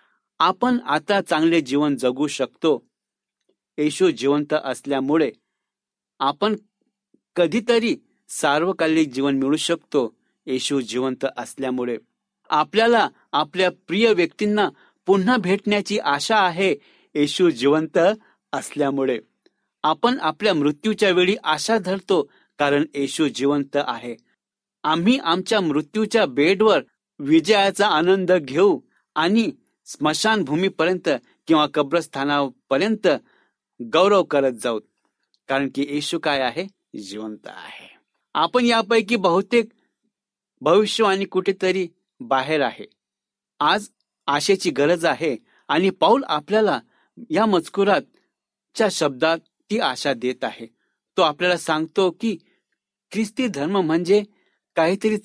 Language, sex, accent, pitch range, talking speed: Marathi, male, native, 145-205 Hz, 100 wpm